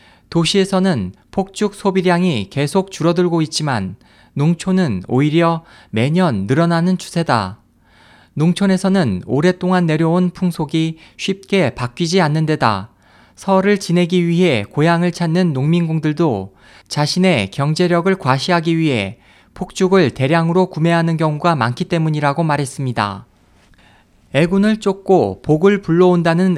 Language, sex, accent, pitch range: Korean, male, native, 125-180 Hz